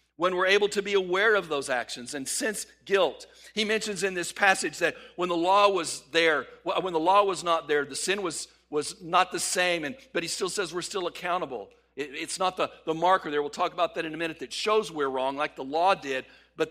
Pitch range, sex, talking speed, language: 145-205 Hz, male, 240 wpm, English